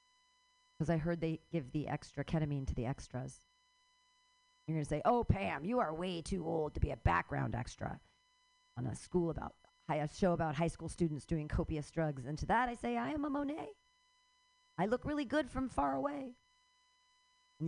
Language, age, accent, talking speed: English, 40-59, American, 195 wpm